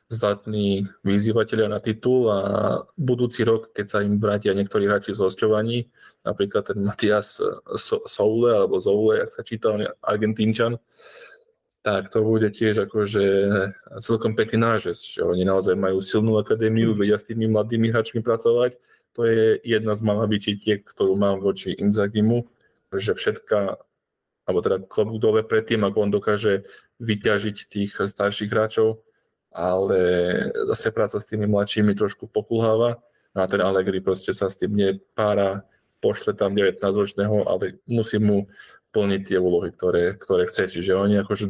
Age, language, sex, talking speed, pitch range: 20-39, Slovak, male, 145 wpm, 100-115 Hz